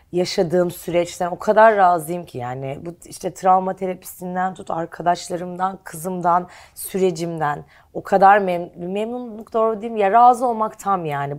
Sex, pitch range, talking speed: female, 145-210 Hz, 140 wpm